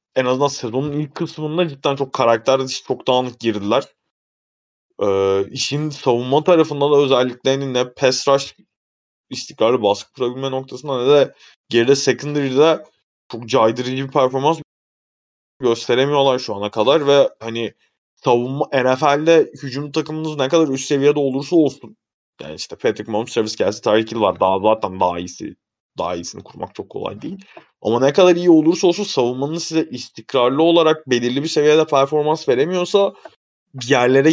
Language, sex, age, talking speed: Turkish, male, 20-39, 145 wpm